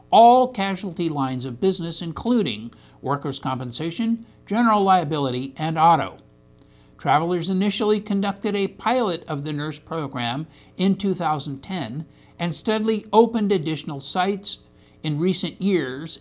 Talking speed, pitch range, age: 115 wpm, 145-205 Hz, 60-79